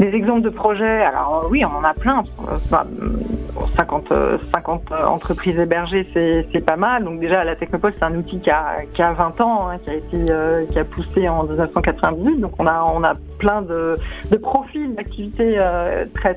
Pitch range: 165-190 Hz